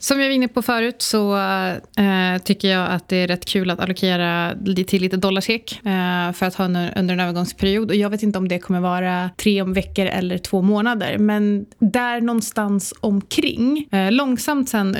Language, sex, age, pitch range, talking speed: Swedish, female, 20-39, 185-210 Hz, 190 wpm